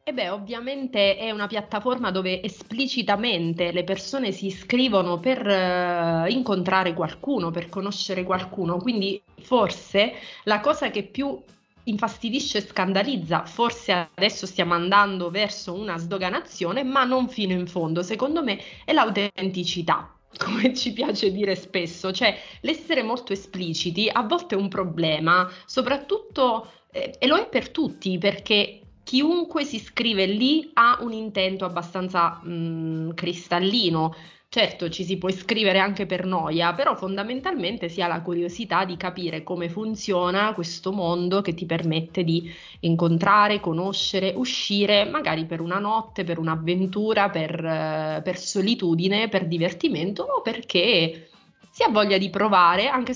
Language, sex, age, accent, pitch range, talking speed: Italian, female, 30-49, native, 175-235 Hz, 135 wpm